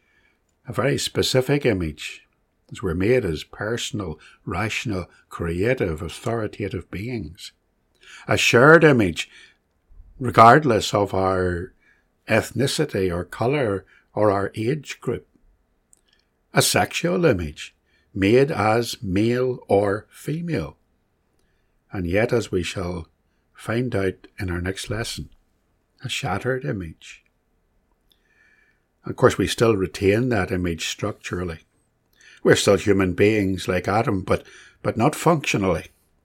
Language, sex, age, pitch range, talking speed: English, male, 60-79, 90-120 Hz, 110 wpm